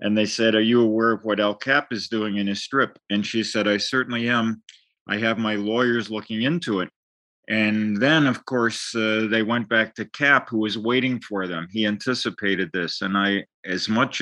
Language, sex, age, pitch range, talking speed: English, male, 40-59, 100-120 Hz, 210 wpm